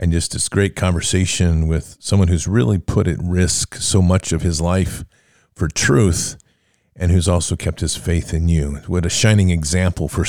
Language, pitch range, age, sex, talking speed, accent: English, 85-100 Hz, 50-69, male, 185 wpm, American